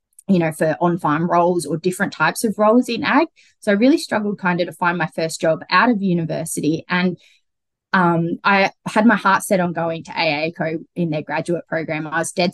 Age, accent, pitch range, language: 20-39, Australian, 175-210 Hz, English